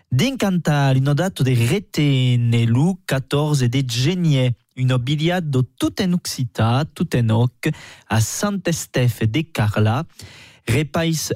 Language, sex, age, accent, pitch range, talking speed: French, male, 20-39, French, 120-165 Hz, 105 wpm